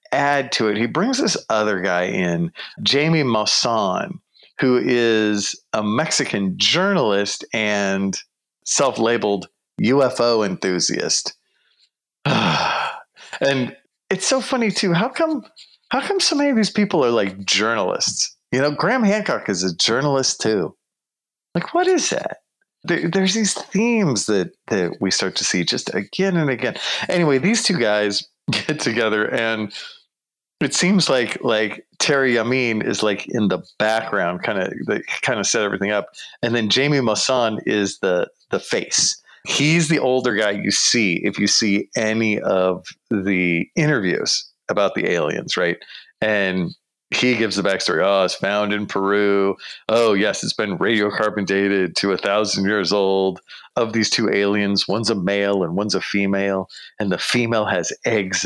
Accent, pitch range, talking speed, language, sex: American, 100-165 Hz, 155 wpm, English, male